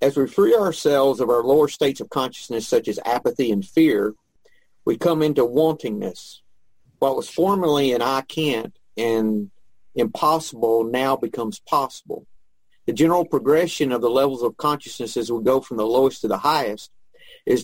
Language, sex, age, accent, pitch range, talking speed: English, male, 50-69, American, 120-150 Hz, 165 wpm